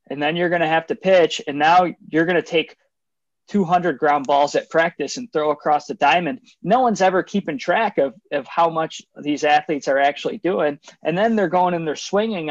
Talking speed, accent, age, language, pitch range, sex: 215 wpm, American, 20-39, English, 150-185 Hz, male